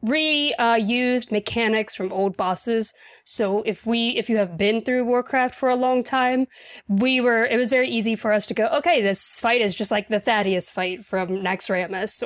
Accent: American